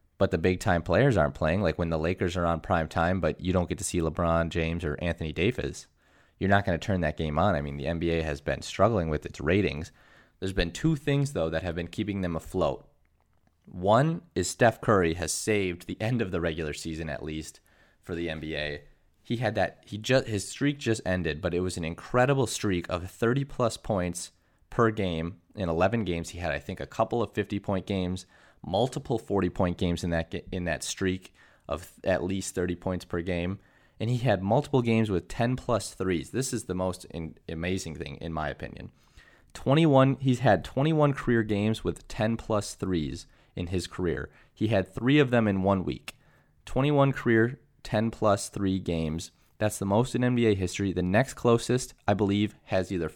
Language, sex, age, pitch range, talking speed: English, male, 20-39, 85-110 Hz, 200 wpm